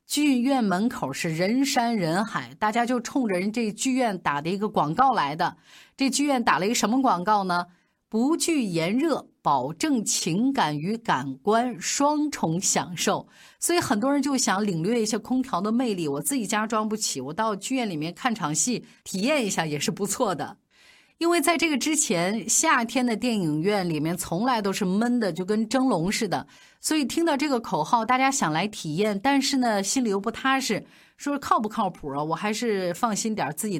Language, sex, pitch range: Chinese, female, 185-260 Hz